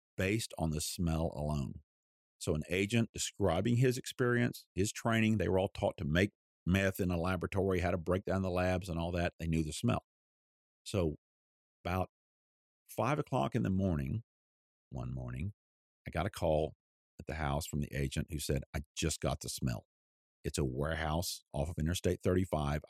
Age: 50-69